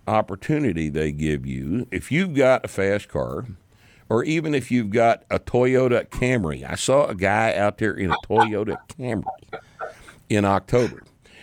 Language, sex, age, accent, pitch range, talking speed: English, male, 60-79, American, 80-115 Hz, 160 wpm